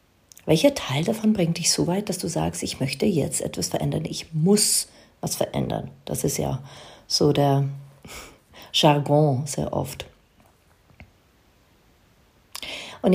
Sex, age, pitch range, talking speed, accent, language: female, 40-59, 150-215 Hz, 130 wpm, German, German